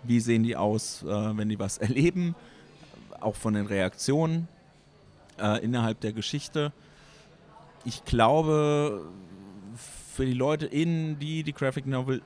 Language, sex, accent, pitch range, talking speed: German, male, German, 110-135 Hz, 130 wpm